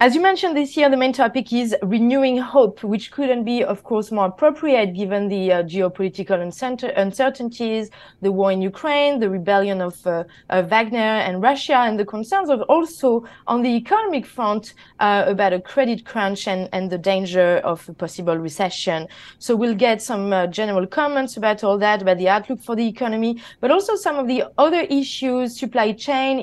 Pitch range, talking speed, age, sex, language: 205-265 Hz, 185 wpm, 30-49, female, English